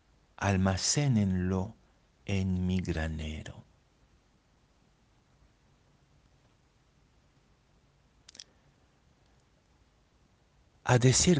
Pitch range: 95-120 Hz